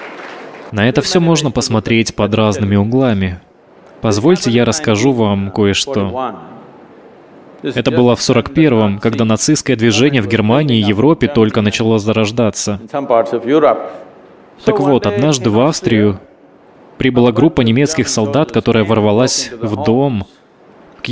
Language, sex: Russian, male